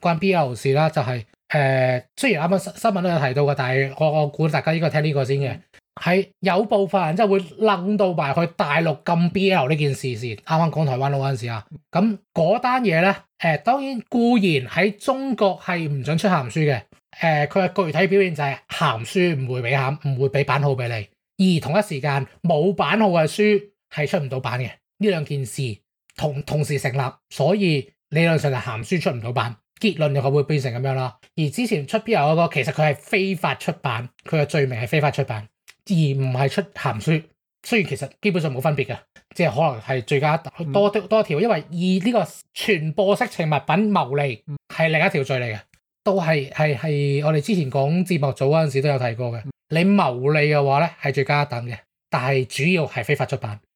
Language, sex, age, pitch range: English, male, 20-39, 135-190 Hz